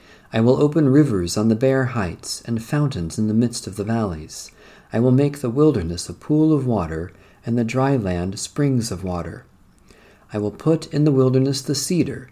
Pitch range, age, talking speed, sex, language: 100-140 Hz, 50-69, 195 wpm, male, English